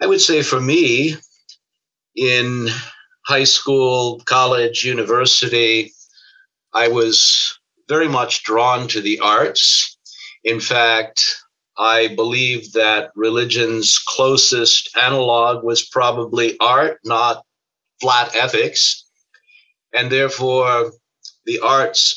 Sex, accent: male, American